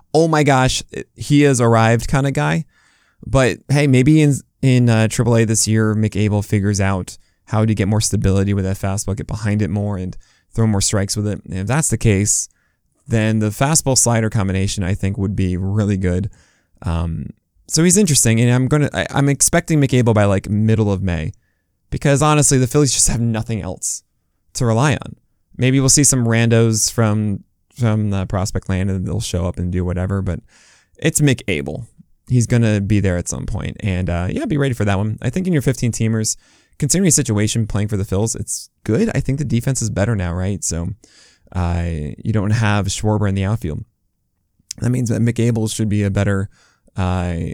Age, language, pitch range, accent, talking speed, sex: 20-39, English, 95-120 Hz, American, 200 wpm, male